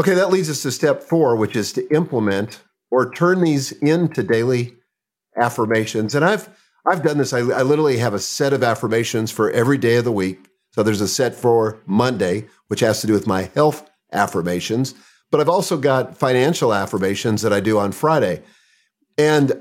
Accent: American